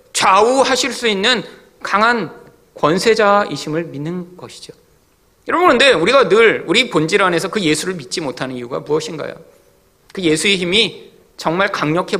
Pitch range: 160-255 Hz